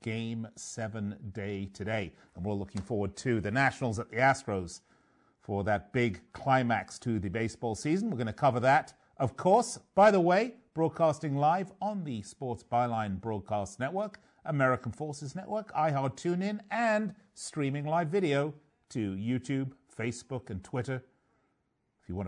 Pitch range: 105-155 Hz